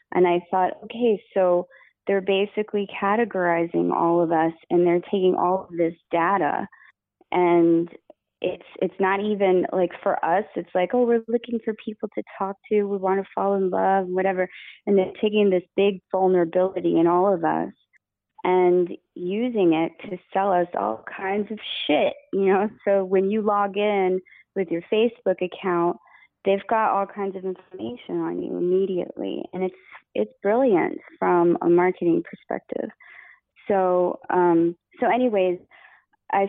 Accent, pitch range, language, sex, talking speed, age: American, 175-200 Hz, English, female, 160 wpm, 20-39